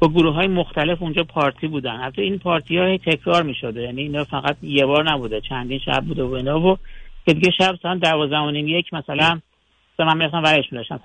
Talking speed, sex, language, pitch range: 190 wpm, male, Persian, 135-180 Hz